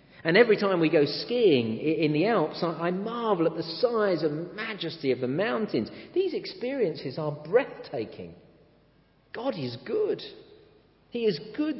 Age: 50-69